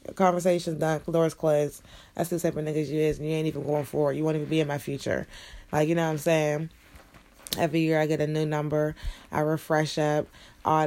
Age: 20-39